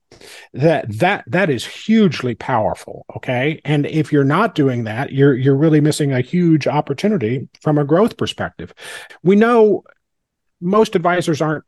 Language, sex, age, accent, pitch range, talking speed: English, male, 40-59, American, 125-155 Hz, 150 wpm